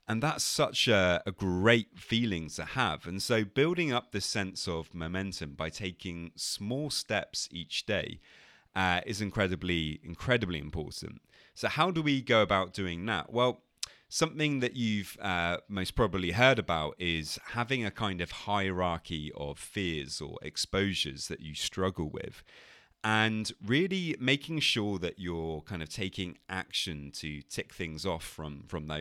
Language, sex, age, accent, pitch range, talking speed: English, male, 30-49, British, 80-110 Hz, 155 wpm